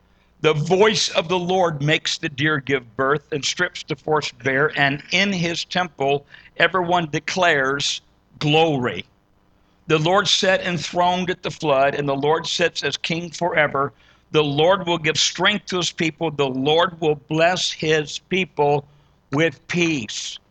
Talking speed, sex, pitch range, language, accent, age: 150 wpm, male, 150-175 Hz, English, American, 60-79